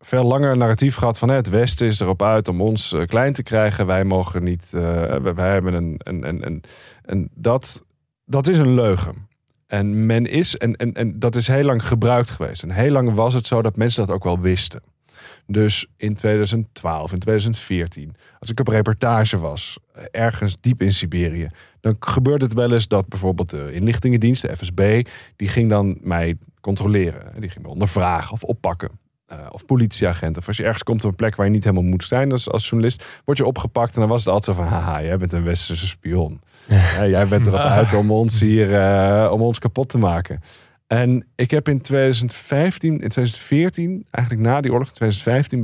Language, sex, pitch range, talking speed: Dutch, male, 95-120 Hz, 205 wpm